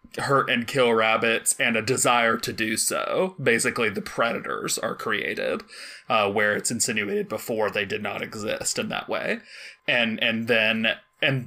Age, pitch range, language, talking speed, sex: 20-39, 110-130 Hz, English, 160 wpm, male